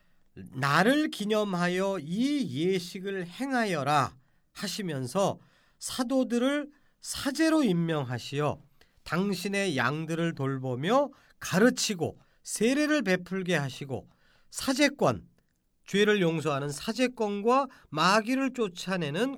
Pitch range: 170-245 Hz